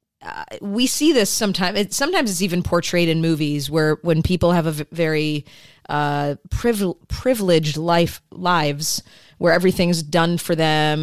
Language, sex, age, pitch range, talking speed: English, female, 30-49, 155-180 Hz, 160 wpm